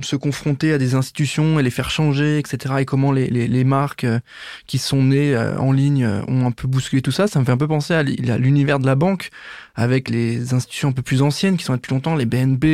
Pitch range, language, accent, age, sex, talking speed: 130-160 Hz, French, French, 20-39, male, 245 wpm